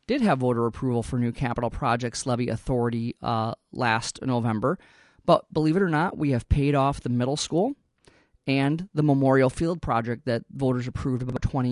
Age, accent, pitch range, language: 30-49, American, 125-150 Hz, English